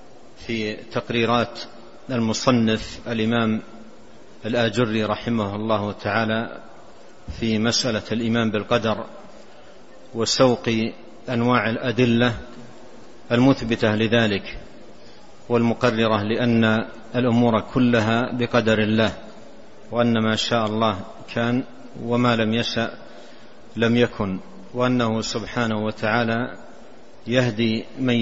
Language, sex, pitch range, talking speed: Arabic, male, 110-125 Hz, 80 wpm